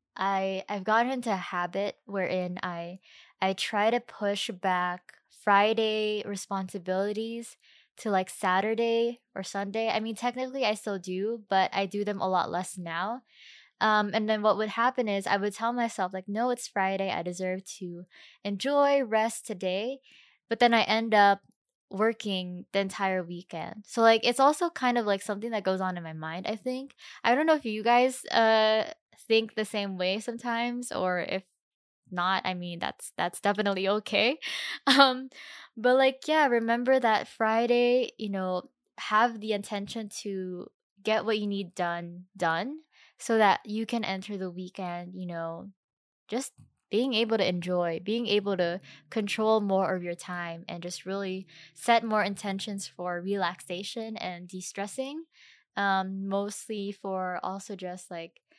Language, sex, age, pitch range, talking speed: English, female, 10-29, 185-230 Hz, 160 wpm